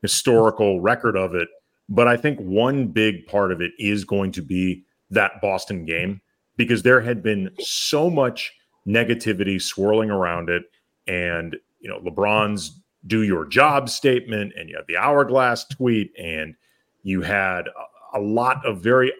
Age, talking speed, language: 40-59, 155 wpm, English